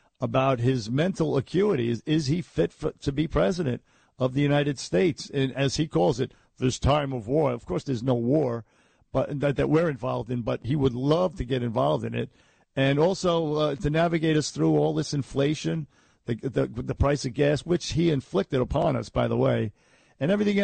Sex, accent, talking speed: male, American, 205 wpm